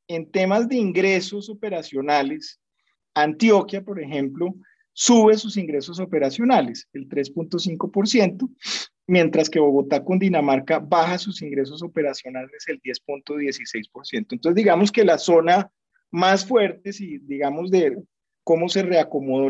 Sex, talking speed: male, 115 wpm